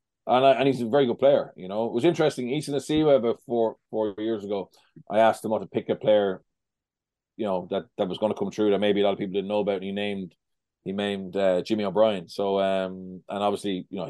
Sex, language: male, English